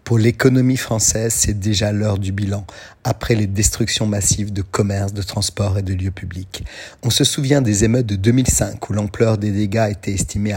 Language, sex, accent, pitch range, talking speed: French, male, French, 100-120 Hz, 185 wpm